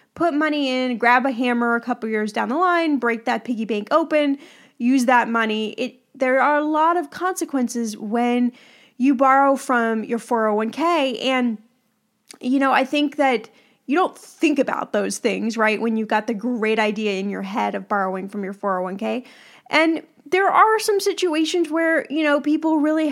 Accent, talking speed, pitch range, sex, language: American, 180 wpm, 235-305 Hz, female, English